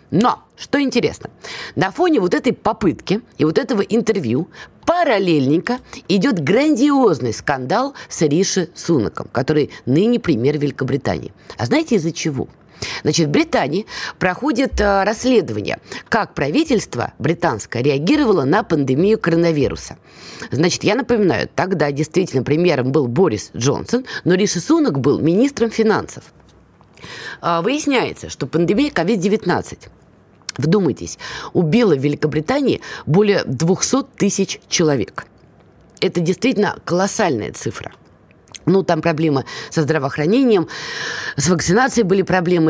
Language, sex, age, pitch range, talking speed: Russian, female, 20-39, 155-220 Hz, 110 wpm